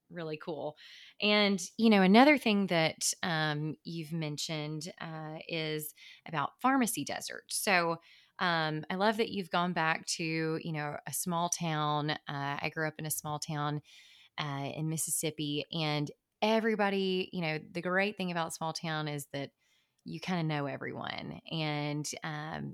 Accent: American